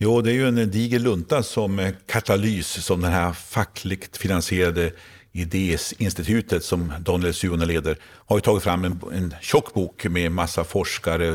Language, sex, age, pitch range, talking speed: Swedish, male, 50-69, 85-110 Hz, 155 wpm